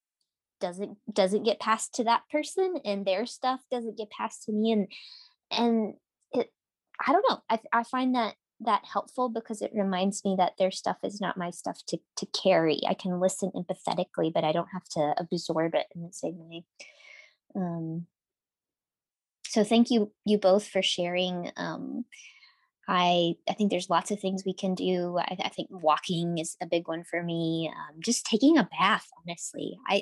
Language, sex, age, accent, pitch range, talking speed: English, female, 20-39, American, 175-230 Hz, 185 wpm